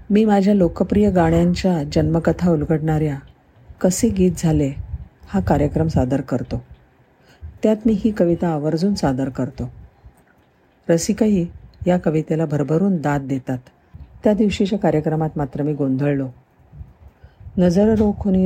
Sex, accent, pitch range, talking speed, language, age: female, native, 135-185 Hz, 110 wpm, Marathi, 40-59